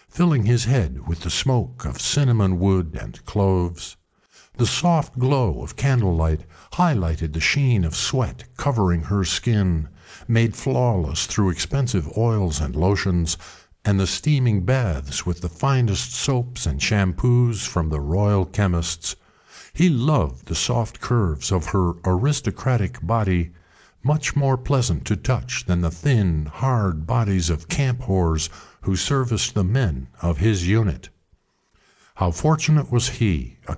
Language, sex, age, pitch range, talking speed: English, male, 50-69, 85-125 Hz, 140 wpm